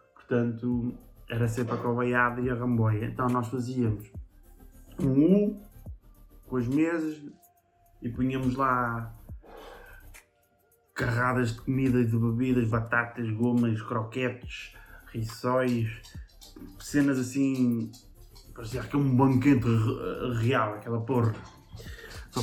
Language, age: Portuguese, 20-39